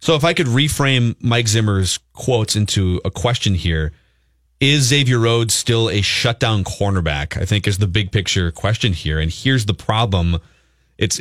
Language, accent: English, American